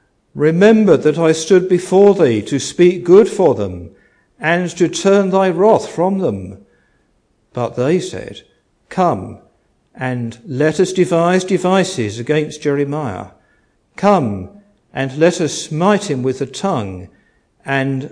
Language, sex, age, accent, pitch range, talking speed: English, male, 50-69, British, 130-175 Hz, 130 wpm